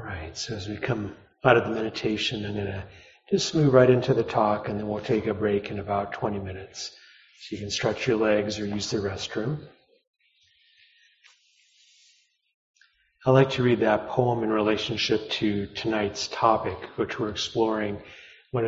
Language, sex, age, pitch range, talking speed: English, male, 40-59, 105-125 Hz, 170 wpm